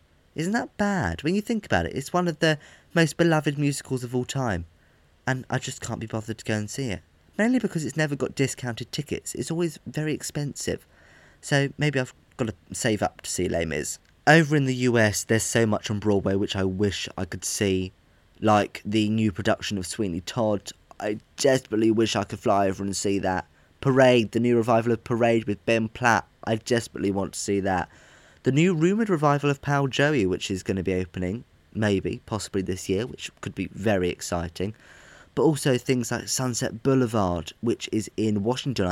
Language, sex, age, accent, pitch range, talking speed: English, male, 20-39, British, 95-130 Hz, 200 wpm